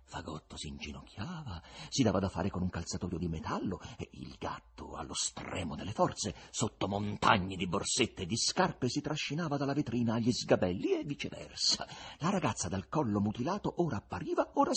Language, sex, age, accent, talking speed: Italian, male, 50-69, native, 170 wpm